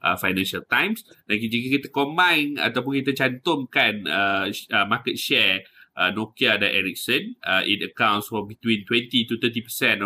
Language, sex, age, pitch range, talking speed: Malay, male, 20-39, 100-115 Hz, 155 wpm